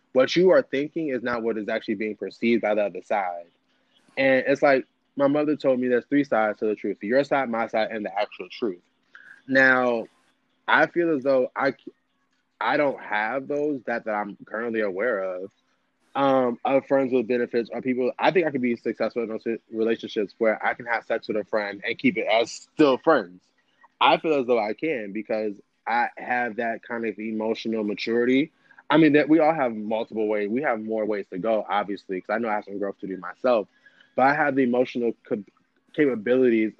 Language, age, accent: English, 20-39, American